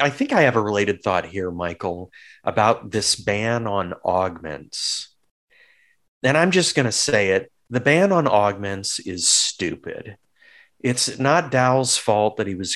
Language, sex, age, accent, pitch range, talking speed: English, male, 40-59, American, 100-135 Hz, 155 wpm